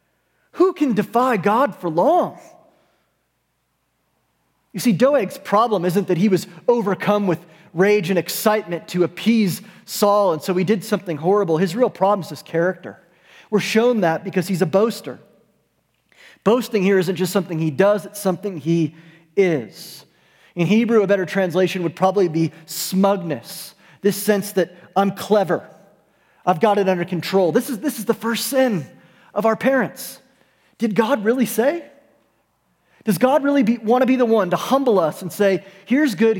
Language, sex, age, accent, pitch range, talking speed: English, male, 30-49, American, 180-230 Hz, 165 wpm